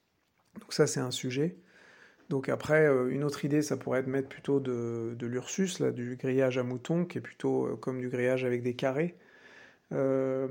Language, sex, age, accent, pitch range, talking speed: English, male, 50-69, French, 130-150 Hz, 200 wpm